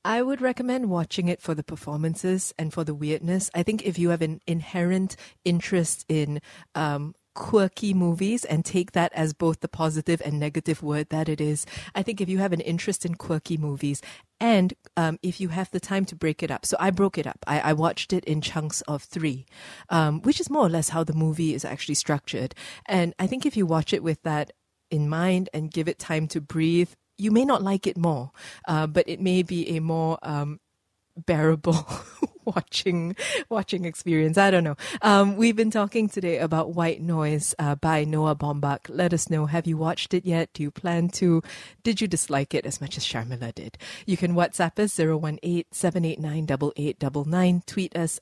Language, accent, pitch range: English, Malaysian, 155-185 Hz